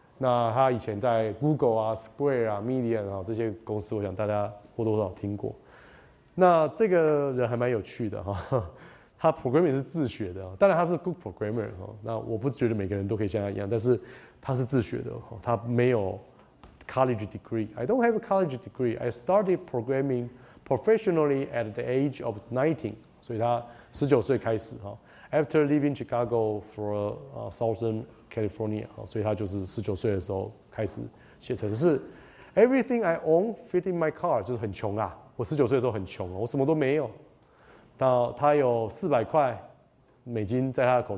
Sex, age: male, 20-39